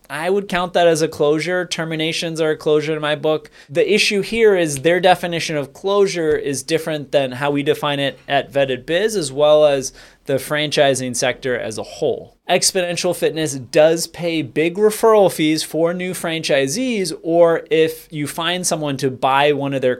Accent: American